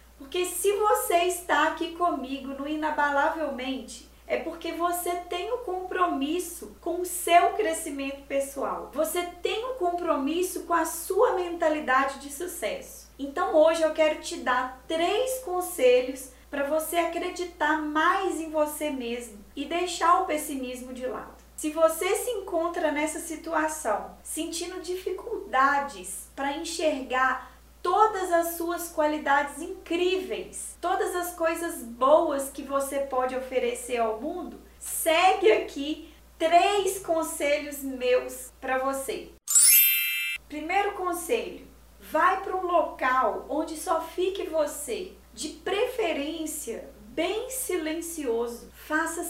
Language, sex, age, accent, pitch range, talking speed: Portuguese, female, 20-39, Brazilian, 290-360 Hz, 120 wpm